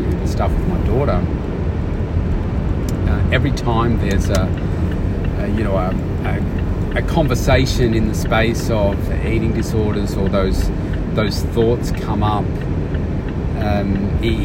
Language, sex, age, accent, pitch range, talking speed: English, male, 40-59, Australian, 85-100 Hz, 125 wpm